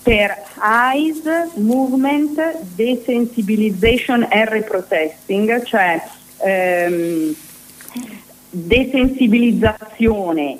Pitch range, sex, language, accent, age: 195-255 Hz, female, Italian, native, 40-59